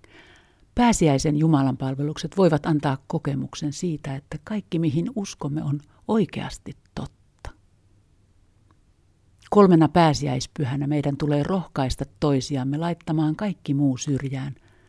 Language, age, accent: Finnish, 50-69, native